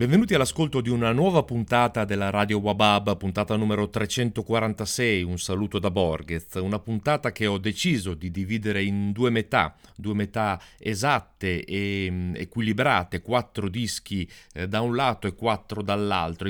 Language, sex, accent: Italian, male, native